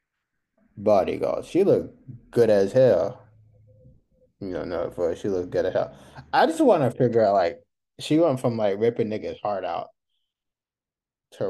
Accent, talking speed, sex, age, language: American, 160 wpm, male, 20-39, English